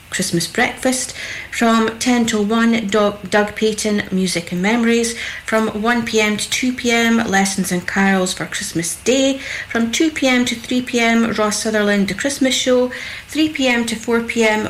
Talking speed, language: 135 wpm, English